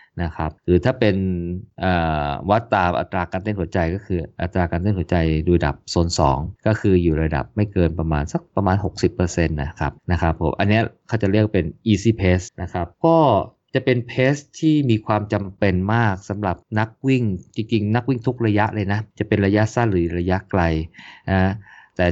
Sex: male